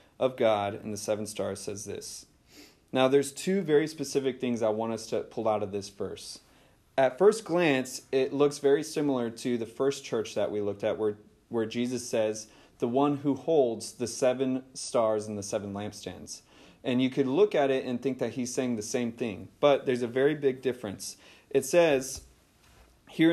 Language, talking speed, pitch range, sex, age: English, 195 wpm, 115-140 Hz, male, 30-49